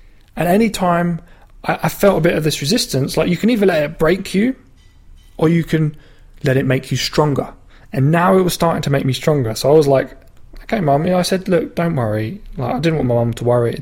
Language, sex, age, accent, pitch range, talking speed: English, male, 20-39, British, 125-170 Hz, 245 wpm